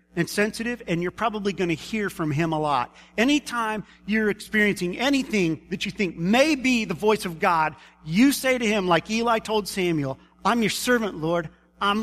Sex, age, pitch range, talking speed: male, 40-59, 140-195 Hz, 190 wpm